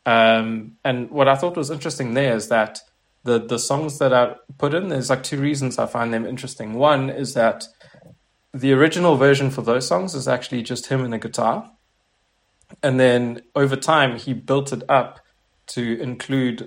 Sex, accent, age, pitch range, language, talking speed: male, South African, 20-39, 115-135 Hz, English, 185 wpm